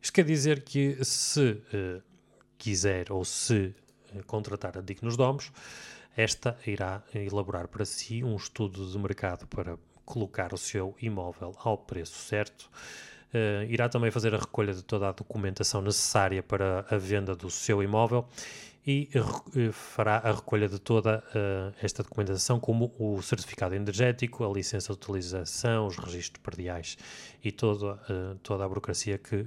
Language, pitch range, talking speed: Portuguese, 95-115 Hz, 150 wpm